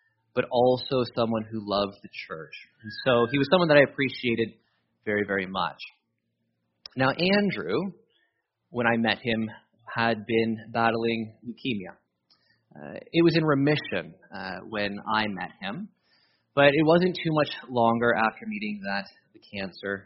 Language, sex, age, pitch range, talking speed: English, male, 30-49, 105-130 Hz, 145 wpm